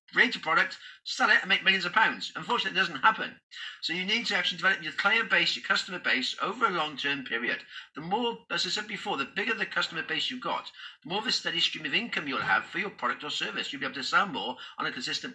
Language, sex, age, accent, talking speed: English, male, 50-69, British, 260 wpm